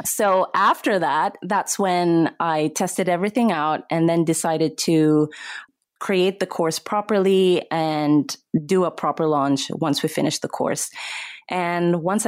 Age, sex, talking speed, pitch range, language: 20-39, female, 140 wpm, 160-195 Hz, English